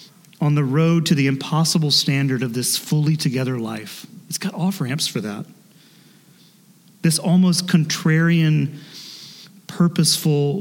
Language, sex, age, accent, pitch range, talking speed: English, male, 30-49, American, 140-190 Hz, 120 wpm